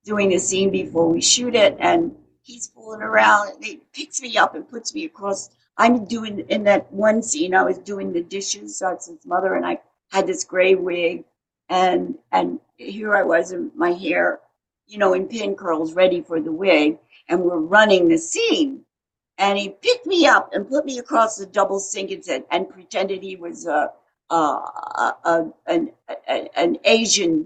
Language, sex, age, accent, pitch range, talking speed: English, female, 50-69, American, 185-300 Hz, 195 wpm